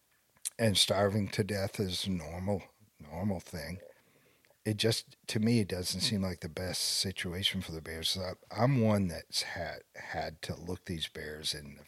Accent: American